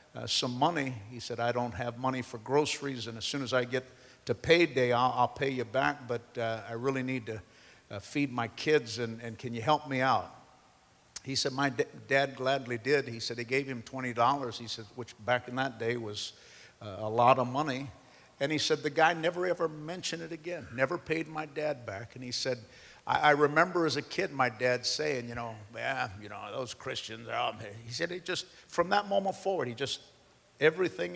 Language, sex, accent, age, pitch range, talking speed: English, male, American, 50-69, 115-140 Hz, 220 wpm